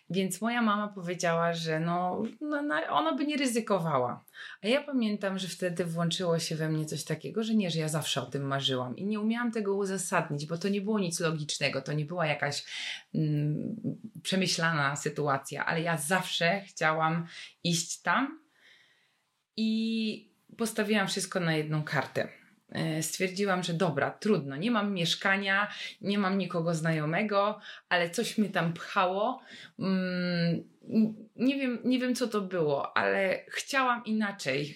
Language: Polish